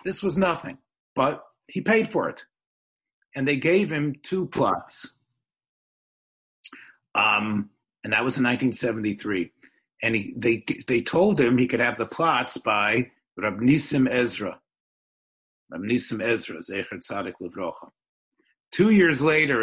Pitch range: 100-130 Hz